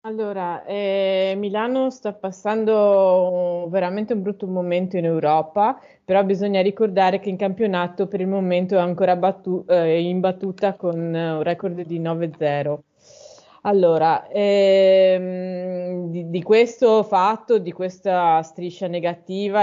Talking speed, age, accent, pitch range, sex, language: 125 wpm, 20-39, native, 170-210 Hz, female, Italian